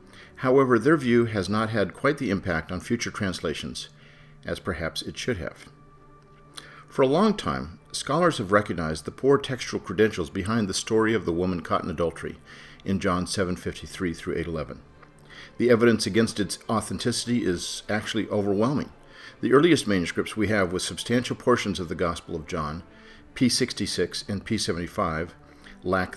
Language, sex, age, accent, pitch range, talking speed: English, male, 50-69, American, 85-120 Hz, 155 wpm